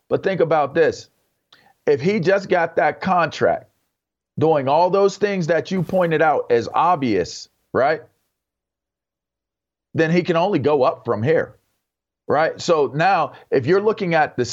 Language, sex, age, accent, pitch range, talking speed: English, male, 40-59, American, 130-195 Hz, 155 wpm